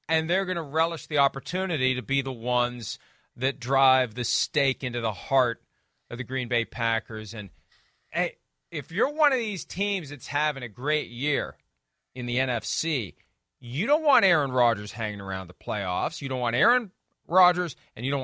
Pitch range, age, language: 110-140 Hz, 40-59, English